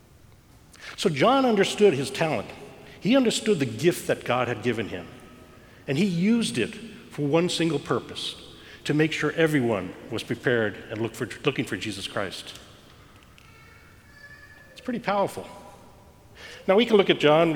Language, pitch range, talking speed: English, 120-165 Hz, 145 wpm